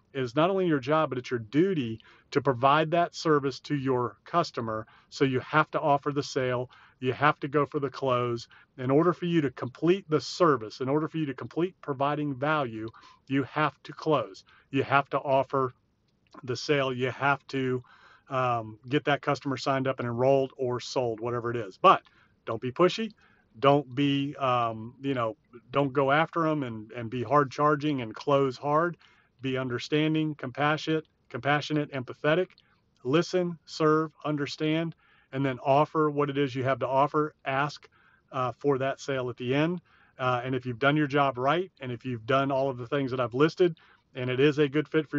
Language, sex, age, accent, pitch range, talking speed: English, male, 40-59, American, 125-150 Hz, 195 wpm